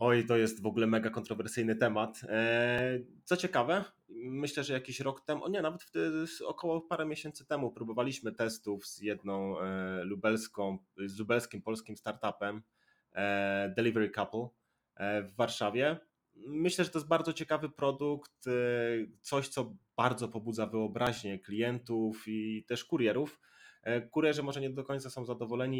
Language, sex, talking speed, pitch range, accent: Polish, male, 135 wpm, 110-130 Hz, native